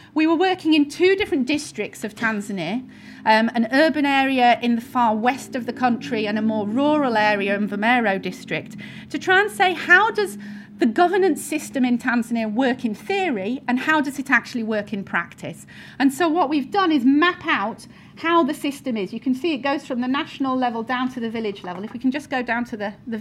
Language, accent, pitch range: English, British, 225-300 Hz